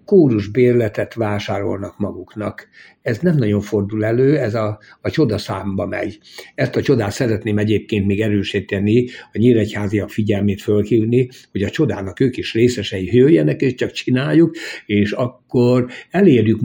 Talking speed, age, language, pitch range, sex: 140 wpm, 60-79, Hungarian, 105-125 Hz, male